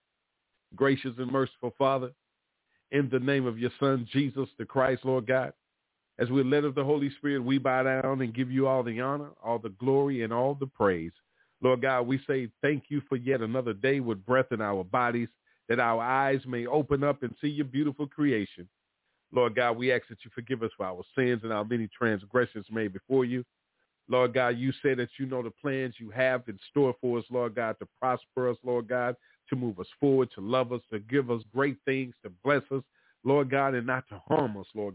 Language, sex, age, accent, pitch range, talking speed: English, male, 50-69, American, 120-140 Hz, 220 wpm